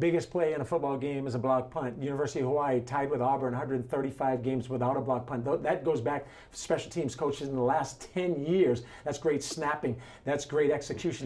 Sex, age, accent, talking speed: male, 50-69, American, 215 wpm